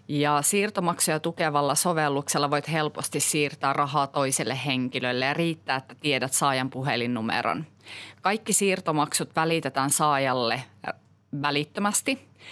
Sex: female